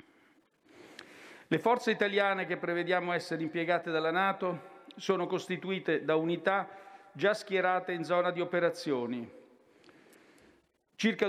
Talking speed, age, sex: 105 wpm, 50-69, male